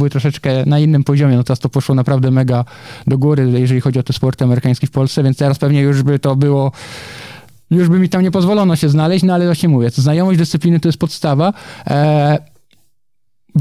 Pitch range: 135-165 Hz